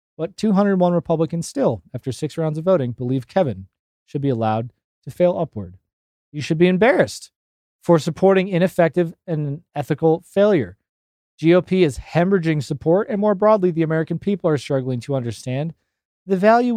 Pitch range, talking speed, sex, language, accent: 125-170 Hz, 155 wpm, male, English, American